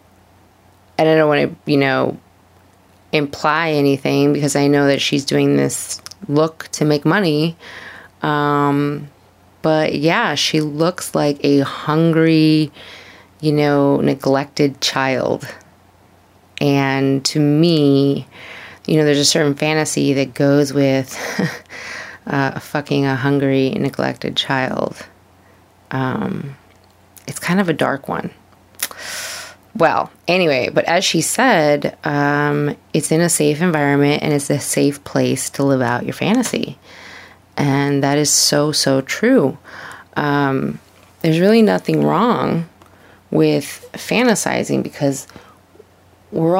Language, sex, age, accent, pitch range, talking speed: English, female, 30-49, American, 95-155 Hz, 120 wpm